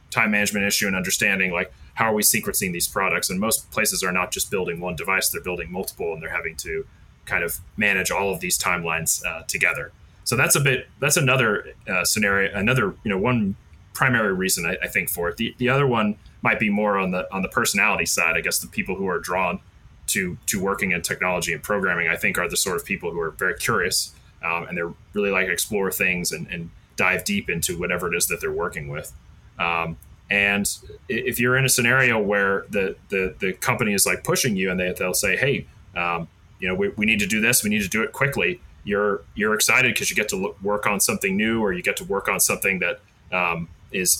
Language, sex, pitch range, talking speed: English, male, 90-125 Hz, 235 wpm